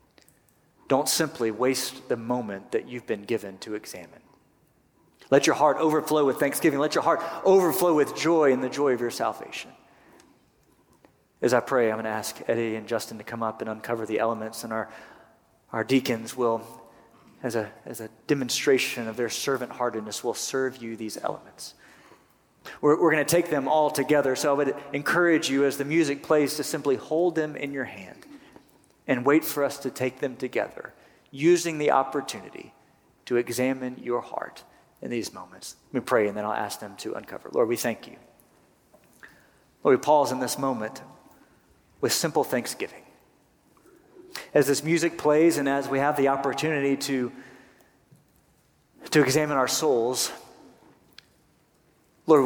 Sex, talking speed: male, 165 wpm